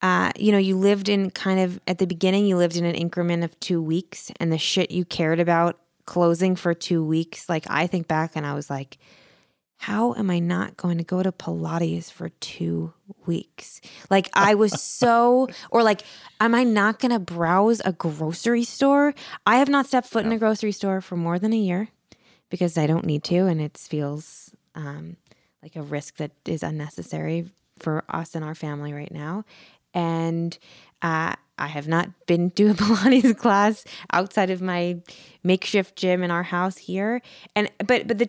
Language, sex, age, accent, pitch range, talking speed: English, female, 20-39, American, 165-205 Hz, 195 wpm